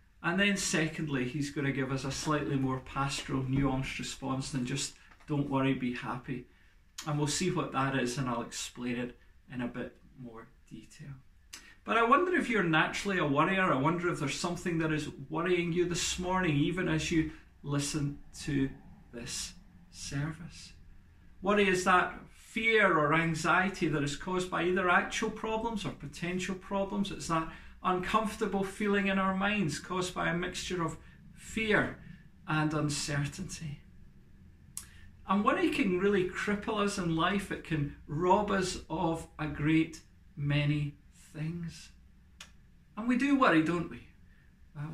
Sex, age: male, 40-59